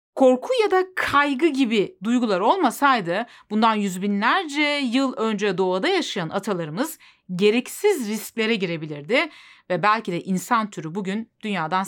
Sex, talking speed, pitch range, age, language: female, 120 wpm, 190-275 Hz, 40-59, Turkish